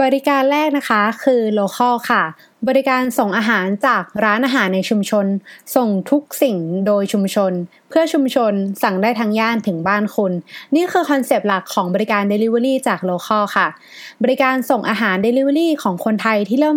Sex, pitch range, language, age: female, 205-275 Hz, Thai, 20-39